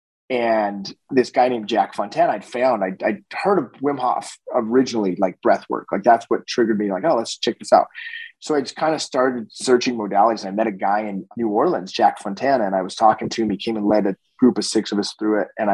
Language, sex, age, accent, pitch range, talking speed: English, male, 30-49, American, 100-125 Hz, 250 wpm